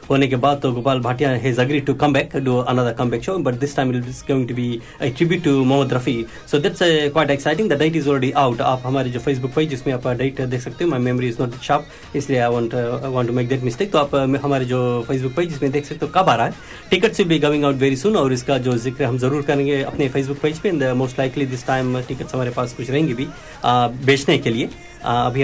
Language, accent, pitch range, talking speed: Hindi, native, 125-145 Hz, 185 wpm